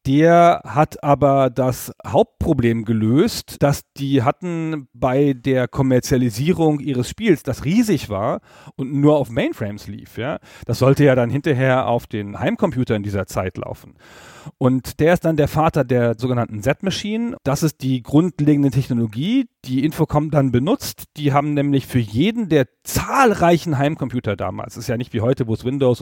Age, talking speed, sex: 40-59, 165 wpm, male